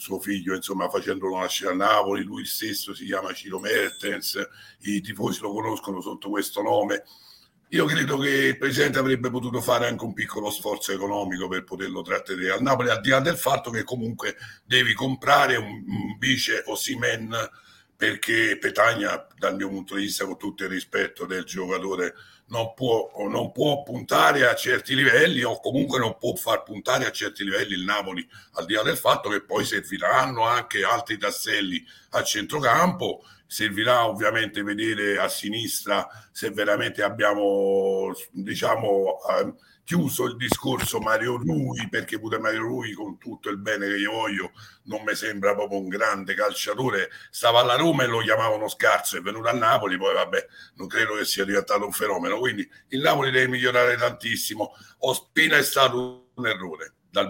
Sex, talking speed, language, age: male, 170 wpm, Italian, 60-79